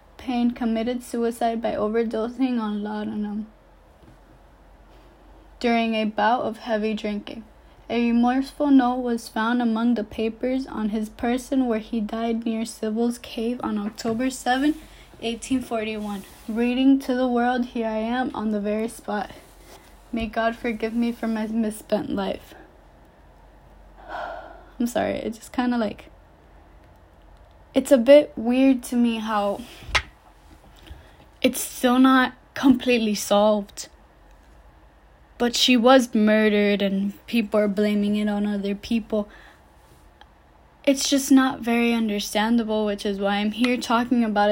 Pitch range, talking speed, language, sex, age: 210-245 Hz, 130 wpm, English, female, 10-29